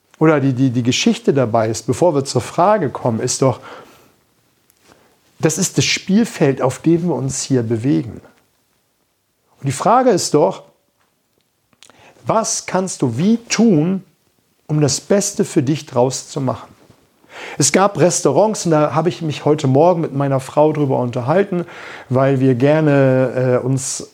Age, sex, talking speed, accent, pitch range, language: 50-69, male, 155 wpm, German, 130-165 Hz, German